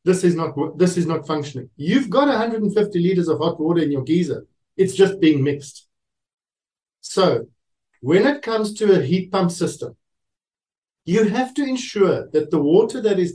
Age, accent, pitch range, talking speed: 50-69, South African, 155-195 Hz, 175 wpm